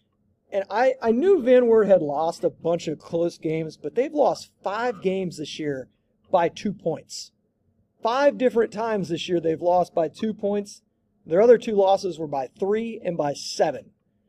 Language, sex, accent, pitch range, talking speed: English, male, American, 135-190 Hz, 180 wpm